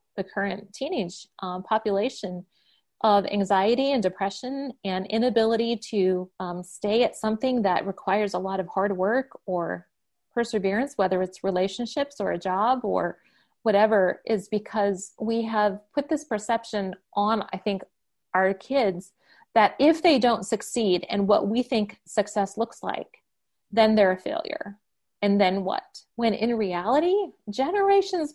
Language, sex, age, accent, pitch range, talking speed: English, female, 30-49, American, 190-235 Hz, 145 wpm